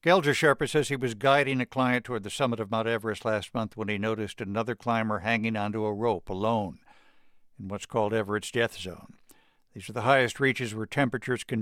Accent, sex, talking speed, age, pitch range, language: American, male, 200 wpm, 60-79, 110-135 Hz, English